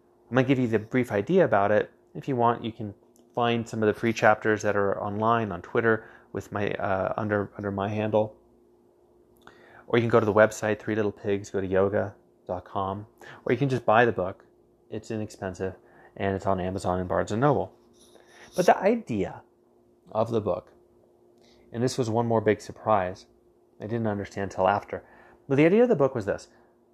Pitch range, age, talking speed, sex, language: 105-125 Hz, 30-49, 200 wpm, male, English